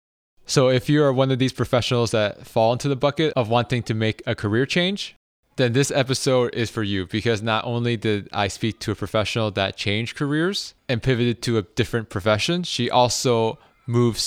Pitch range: 110-130 Hz